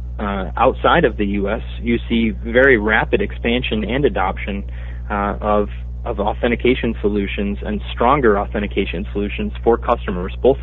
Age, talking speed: 30-49, 135 wpm